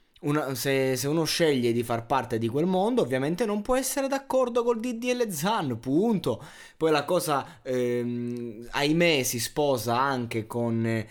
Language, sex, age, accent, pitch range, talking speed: Italian, male, 20-39, native, 120-170 Hz, 150 wpm